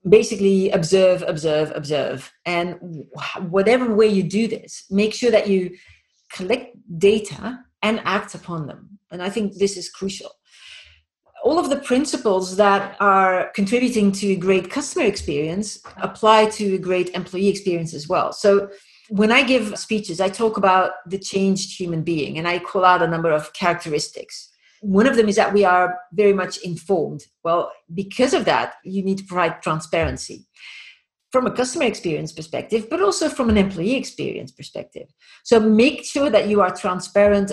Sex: female